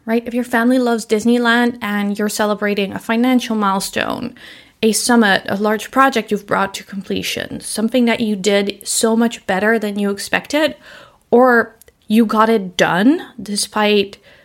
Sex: female